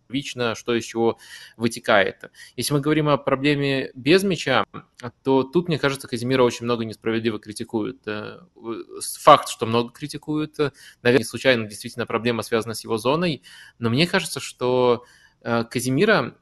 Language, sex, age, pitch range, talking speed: Russian, male, 20-39, 115-135 Hz, 140 wpm